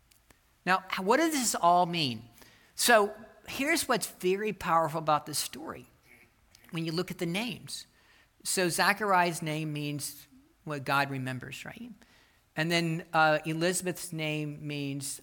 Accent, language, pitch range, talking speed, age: American, English, 140-180 Hz, 135 wpm, 50-69